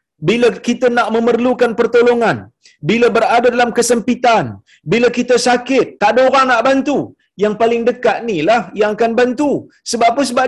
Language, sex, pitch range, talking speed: Malayalam, male, 185-250 Hz, 155 wpm